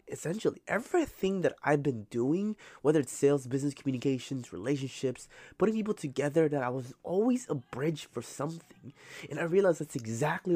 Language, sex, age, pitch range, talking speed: English, male, 20-39, 120-155 Hz, 160 wpm